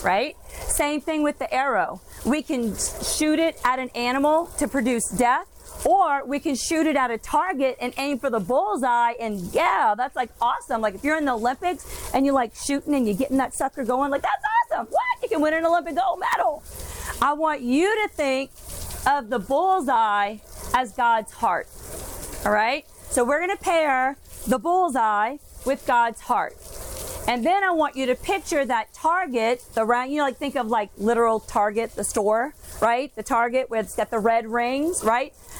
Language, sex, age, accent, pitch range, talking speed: English, female, 40-59, American, 245-315 Hz, 195 wpm